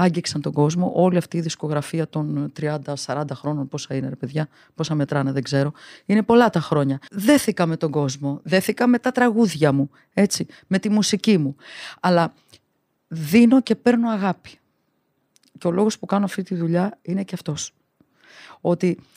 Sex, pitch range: female, 155-210 Hz